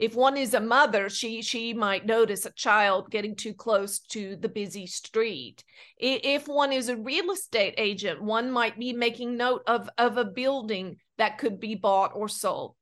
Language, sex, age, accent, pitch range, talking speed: English, female, 40-59, American, 215-265 Hz, 185 wpm